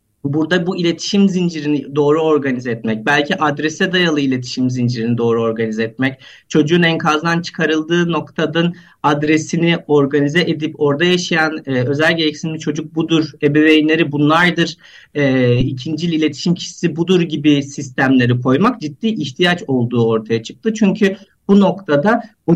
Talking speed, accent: 130 wpm, native